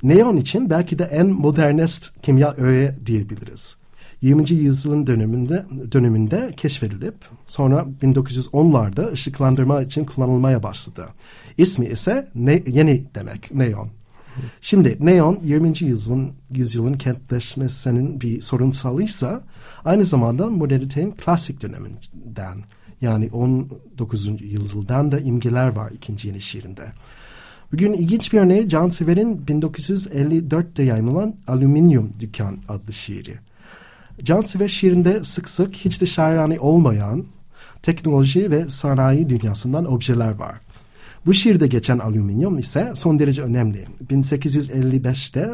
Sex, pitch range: male, 120-160 Hz